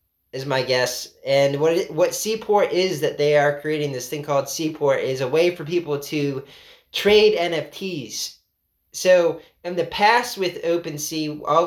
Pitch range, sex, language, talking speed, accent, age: 135-165 Hz, male, English, 165 wpm, American, 20-39